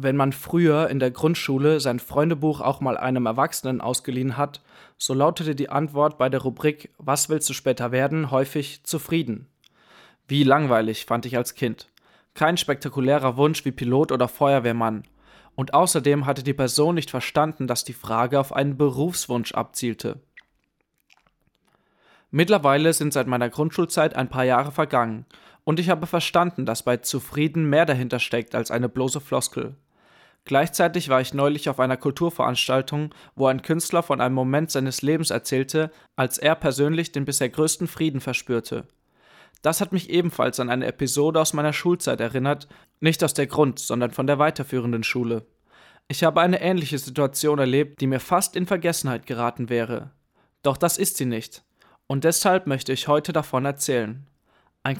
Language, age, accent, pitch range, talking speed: German, 20-39, German, 130-155 Hz, 160 wpm